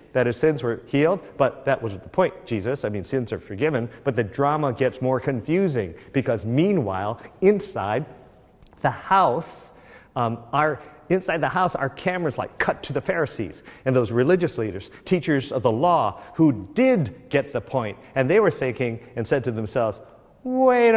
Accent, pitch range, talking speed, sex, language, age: American, 125-185 Hz, 175 wpm, male, English, 50-69